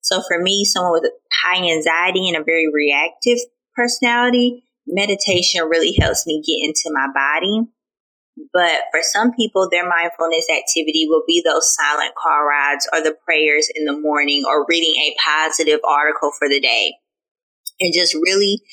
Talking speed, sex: 160 wpm, female